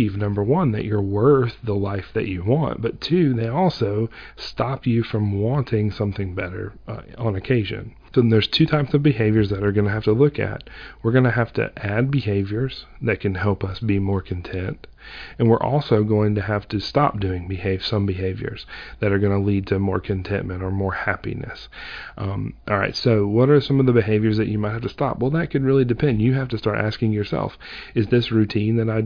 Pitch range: 105-130 Hz